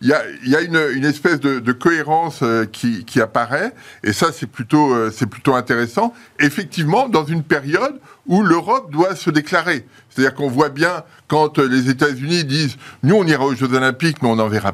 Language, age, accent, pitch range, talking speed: French, 50-69, French, 120-165 Hz, 210 wpm